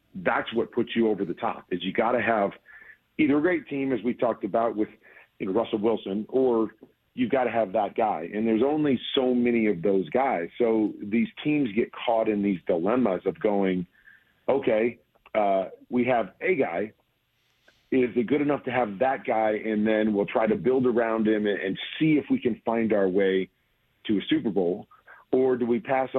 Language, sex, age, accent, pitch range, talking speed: English, male, 40-59, American, 105-125 Hz, 195 wpm